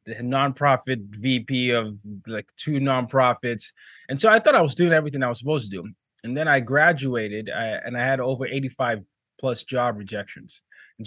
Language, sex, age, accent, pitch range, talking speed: English, male, 20-39, American, 110-140 Hz, 185 wpm